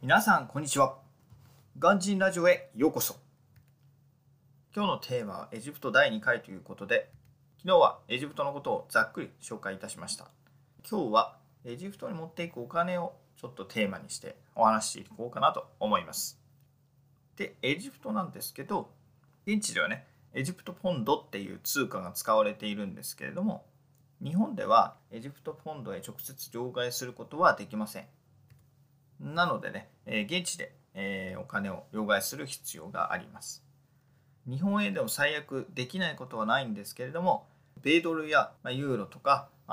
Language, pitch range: Japanese, 125-155 Hz